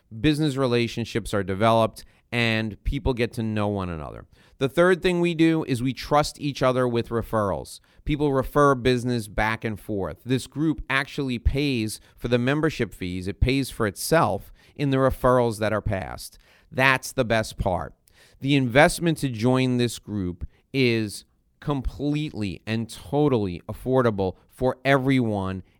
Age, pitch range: 40-59, 105-135 Hz